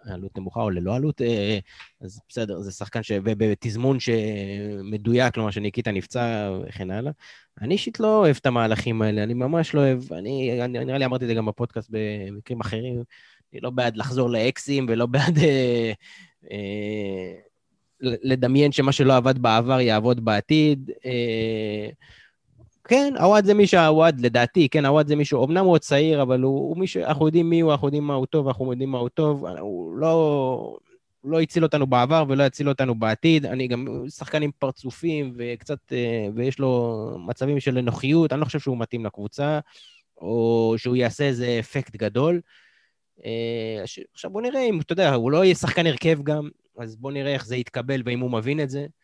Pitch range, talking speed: 115-150 Hz, 175 wpm